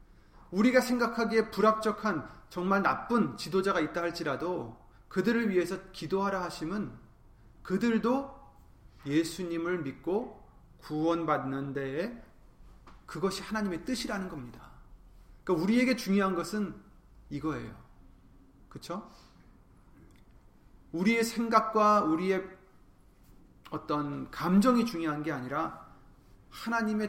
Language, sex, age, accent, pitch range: Korean, male, 30-49, native, 130-200 Hz